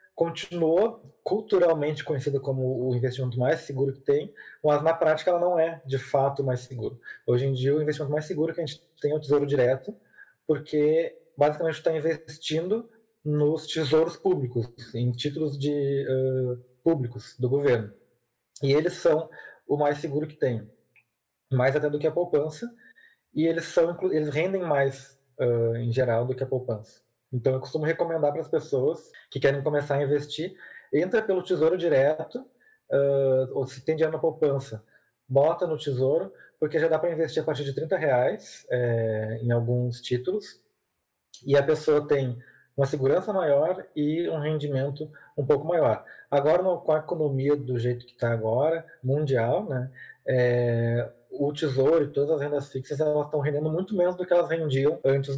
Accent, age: Brazilian, 20-39